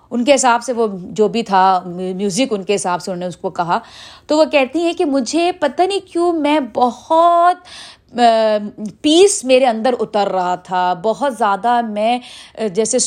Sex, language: female, Urdu